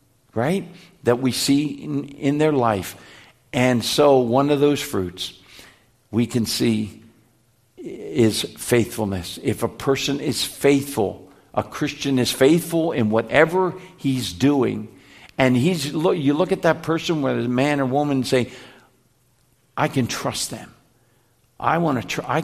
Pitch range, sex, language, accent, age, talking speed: 115-150 Hz, male, English, American, 60-79, 145 wpm